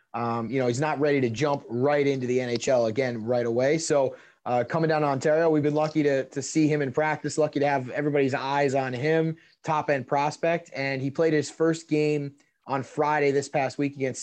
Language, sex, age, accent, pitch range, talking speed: English, male, 20-39, American, 135-160 Hz, 220 wpm